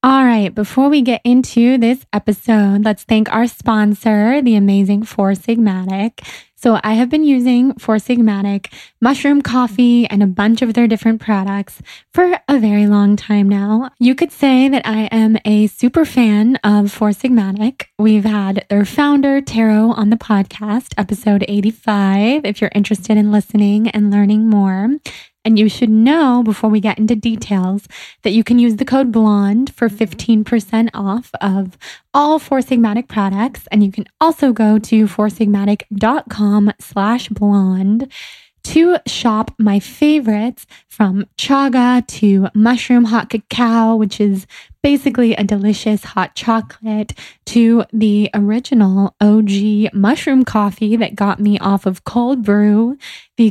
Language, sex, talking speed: English, female, 150 wpm